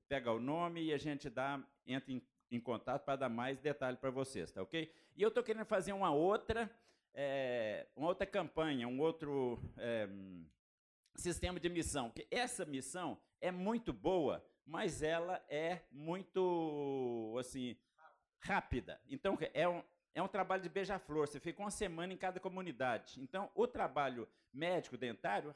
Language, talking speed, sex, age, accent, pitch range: Portuguese, 160 wpm, male, 50-69, Brazilian, 135-180 Hz